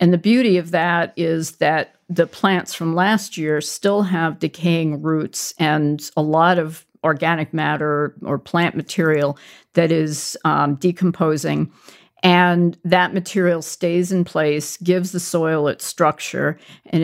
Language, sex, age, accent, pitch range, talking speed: English, female, 50-69, American, 155-175 Hz, 145 wpm